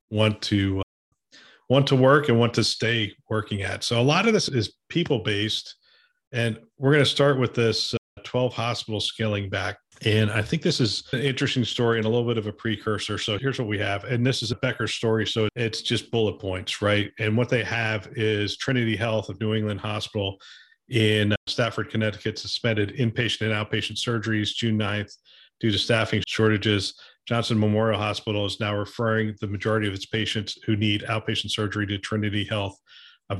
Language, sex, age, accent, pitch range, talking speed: English, male, 40-59, American, 105-115 Hz, 195 wpm